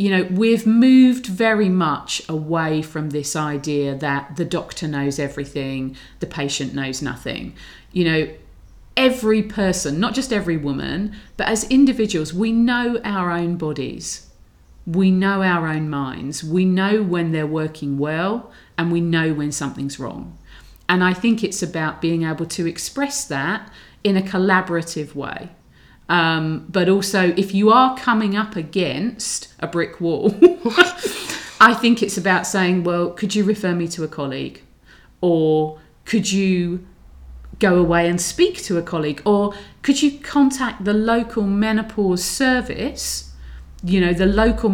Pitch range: 155-210 Hz